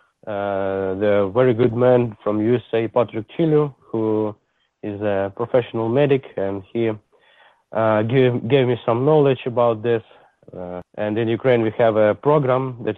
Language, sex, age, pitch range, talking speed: English, male, 30-49, 100-125 Hz, 155 wpm